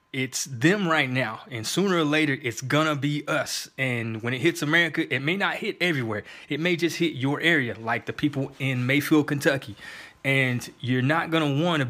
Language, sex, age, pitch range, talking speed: English, male, 20-39, 120-150 Hz, 210 wpm